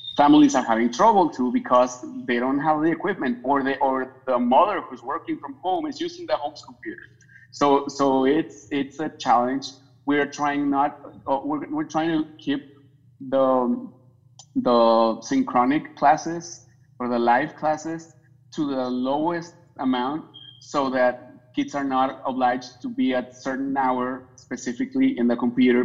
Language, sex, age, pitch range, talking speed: English, male, 30-49, 125-145 Hz, 155 wpm